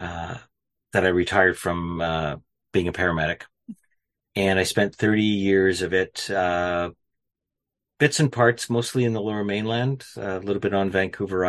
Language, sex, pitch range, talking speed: English, male, 90-110 Hz, 155 wpm